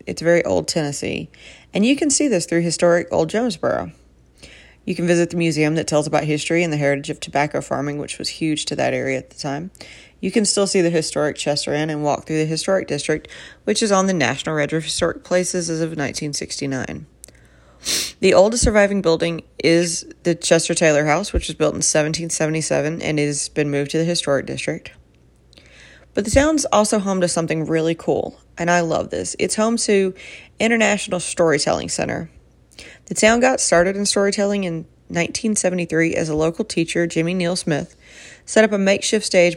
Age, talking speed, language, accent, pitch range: 30-49, 190 wpm, English, American, 155-185 Hz